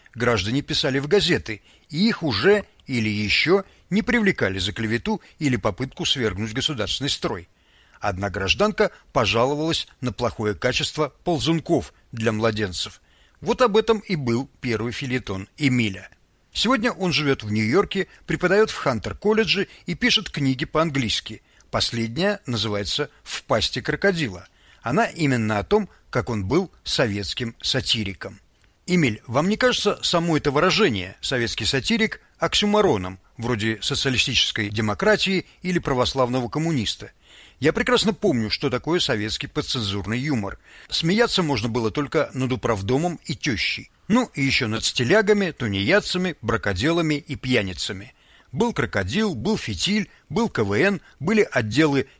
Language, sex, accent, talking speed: Russian, male, native, 125 wpm